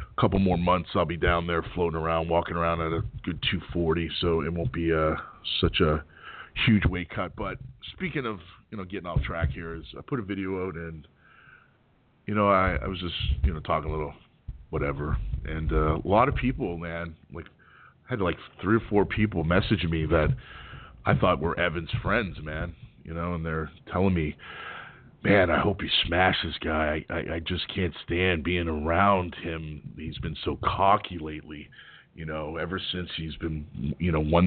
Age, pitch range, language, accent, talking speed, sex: 40-59, 80-95 Hz, English, American, 195 wpm, male